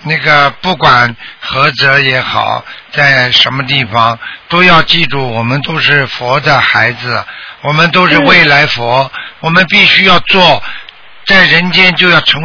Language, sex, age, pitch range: Chinese, male, 50-69, 155-190 Hz